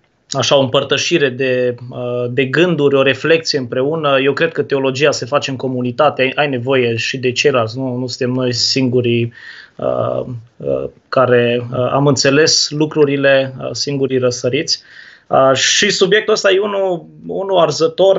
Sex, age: male, 20-39